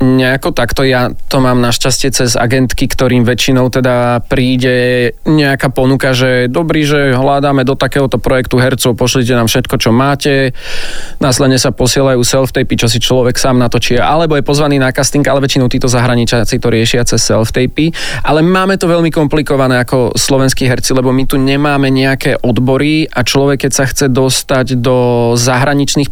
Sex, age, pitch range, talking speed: male, 20-39, 125-140 Hz, 165 wpm